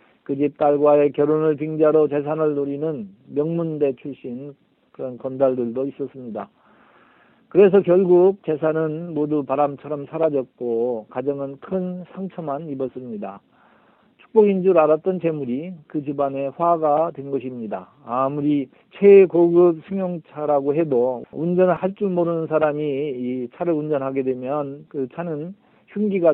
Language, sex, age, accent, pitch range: Korean, male, 40-59, native, 135-165 Hz